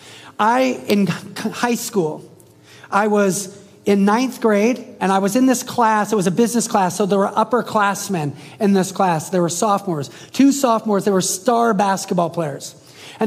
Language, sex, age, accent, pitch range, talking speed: English, male, 30-49, American, 185-235 Hz, 170 wpm